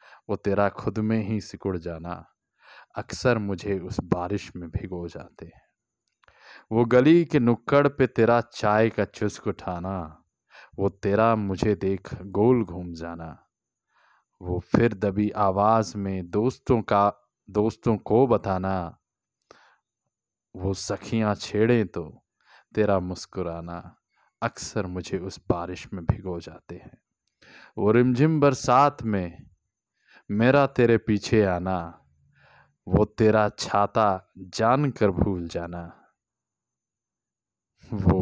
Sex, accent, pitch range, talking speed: male, native, 90-115 Hz, 115 wpm